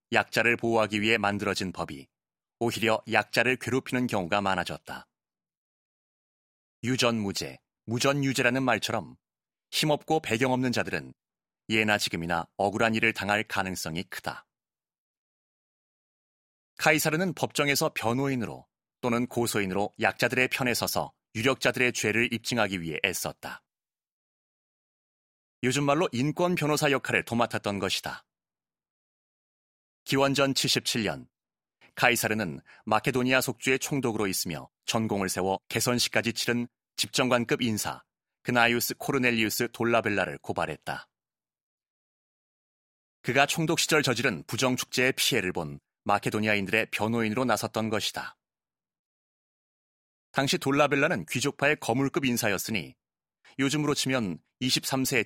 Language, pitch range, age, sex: Korean, 100-130 Hz, 30-49, male